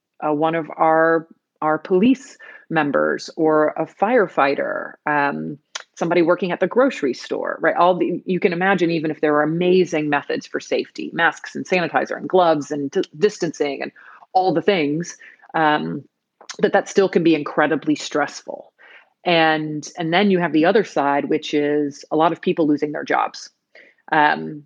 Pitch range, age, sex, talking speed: 150-170 Hz, 30-49, female, 170 wpm